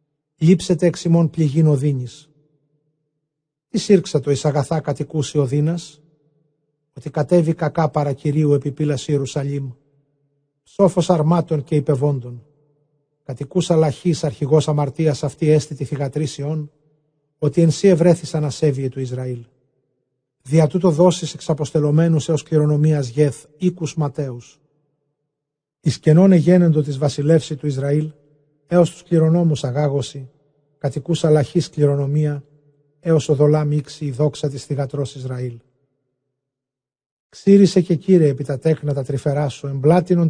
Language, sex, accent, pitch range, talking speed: Greek, male, native, 140-155 Hz, 115 wpm